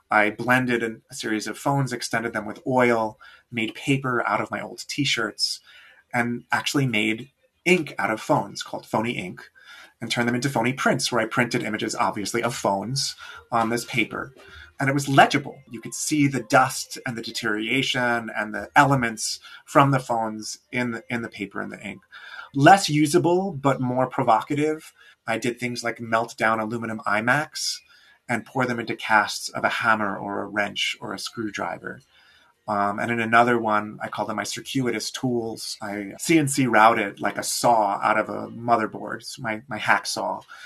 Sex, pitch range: male, 110-130 Hz